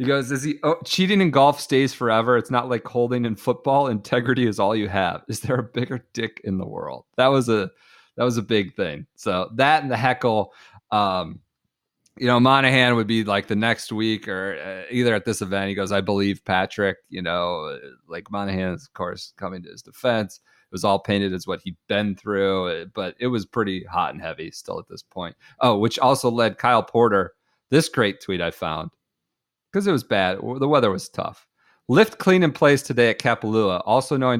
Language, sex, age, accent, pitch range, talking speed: English, male, 30-49, American, 100-130 Hz, 215 wpm